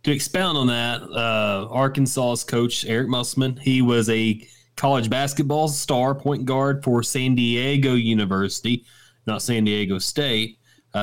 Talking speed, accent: 135 wpm, American